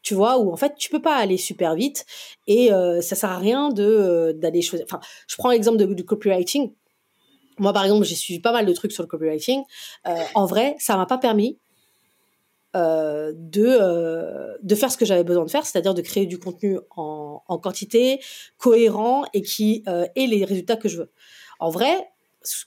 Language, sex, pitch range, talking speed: French, female, 180-245 Hz, 205 wpm